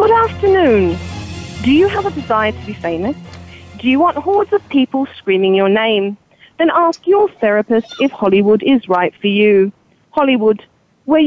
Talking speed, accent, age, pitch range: 165 wpm, British, 40-59, 210-310 Hz